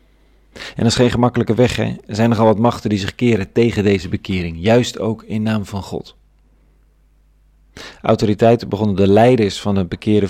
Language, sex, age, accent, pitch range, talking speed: Dutch, male, 40-59, Dutch, 95-110 Hz, 180 wpm